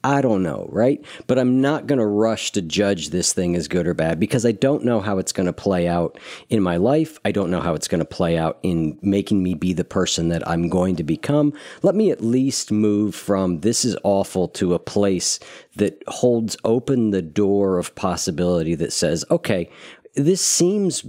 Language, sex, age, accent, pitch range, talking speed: English, male, 50-69, American, 90-120 Hz, 215 wpm